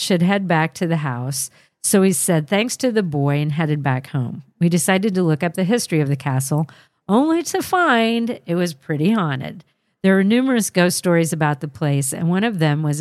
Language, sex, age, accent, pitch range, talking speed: English, female, 50-69, American, 150-190 Hz, 215 wpm